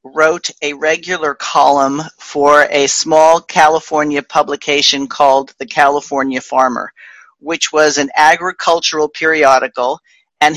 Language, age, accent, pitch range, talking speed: English, 50-69, American, 145-175 Hz, 110 wpm